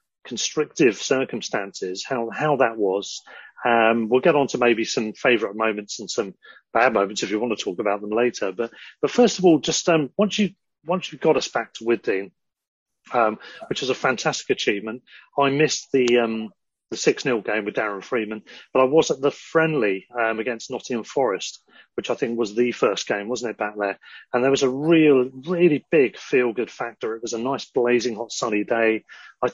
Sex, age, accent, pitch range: male, 30-49, British, 115-155 Hz